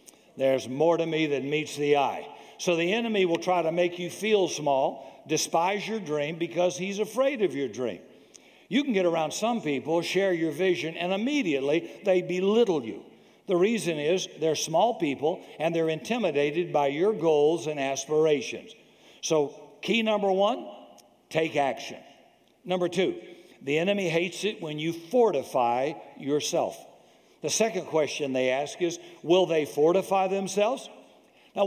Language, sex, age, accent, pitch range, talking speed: English, male, 60-79, American, 145-190 Hz, 155 wpm